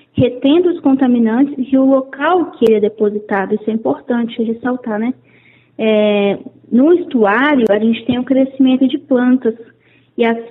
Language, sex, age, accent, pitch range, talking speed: Portuguese, female, 20-39, Brazilian, 225-280 Hz, 150 wpm